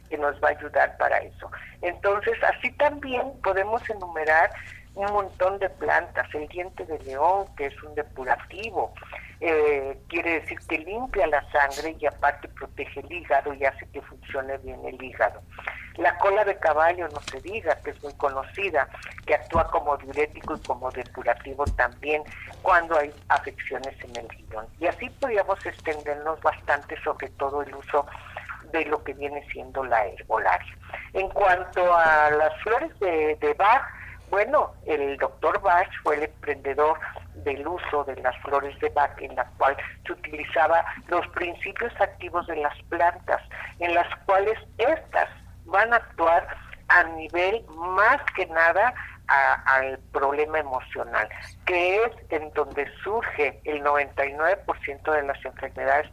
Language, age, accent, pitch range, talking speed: Spanish, 50-69, Mexican, 140-175 Hz, 155 wpm